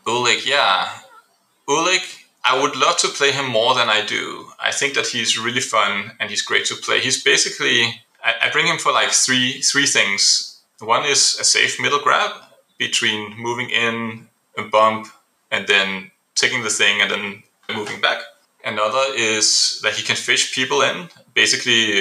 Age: 30-49